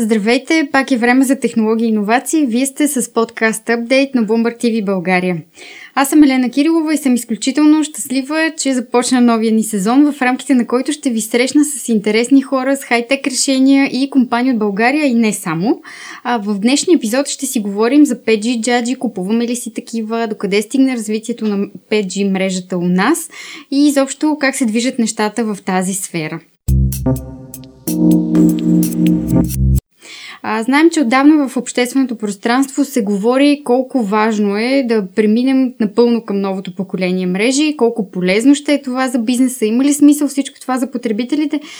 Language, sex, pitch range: Bulgarian, female, 210-275 Hz